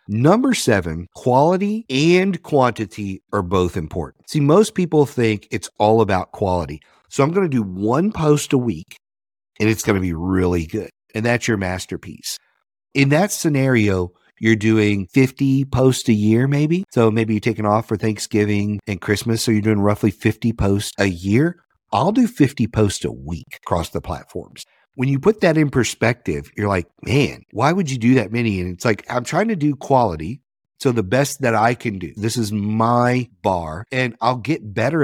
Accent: American